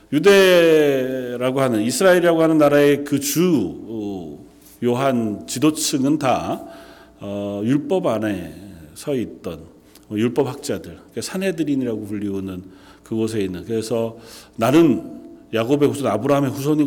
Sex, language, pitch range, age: male, Korean, 115-165 Hz, 40-59